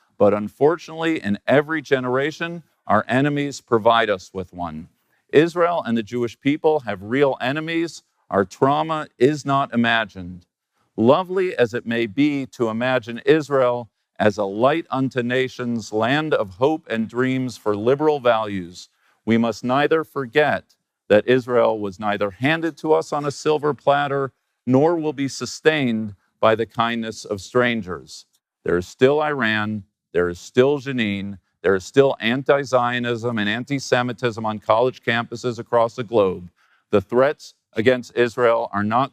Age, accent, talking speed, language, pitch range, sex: 50-69, American, 145 wpm, English, 105-140 Hz, male